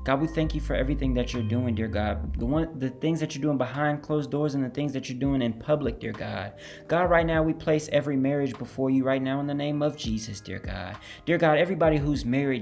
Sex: male